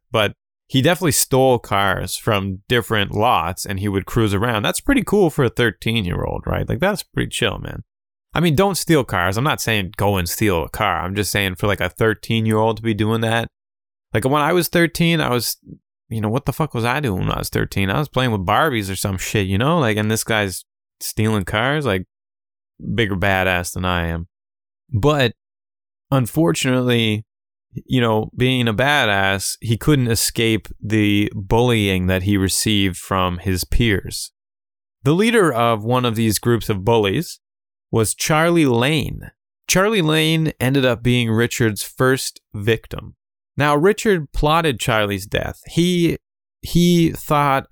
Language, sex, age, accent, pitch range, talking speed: English, male, 20-39, American, 100-140 Hz, 170 wpm